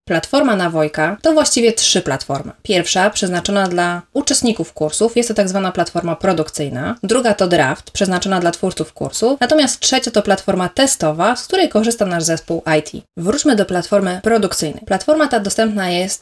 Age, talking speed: 20-39, 160 wpm